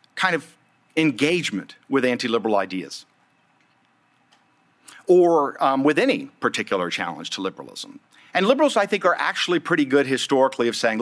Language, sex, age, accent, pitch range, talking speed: English, male, 50-69, American, 120-195 Hz, 135 wpm